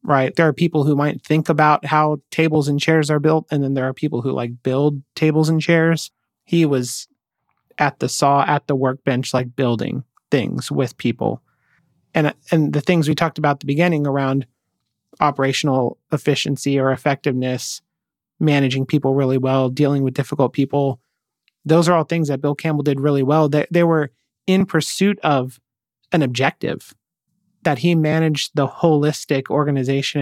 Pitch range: 135-160 Hz